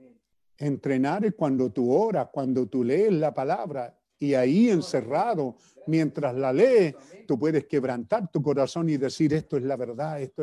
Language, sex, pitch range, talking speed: Spanish, male, 135-205 Hz, 155 wpm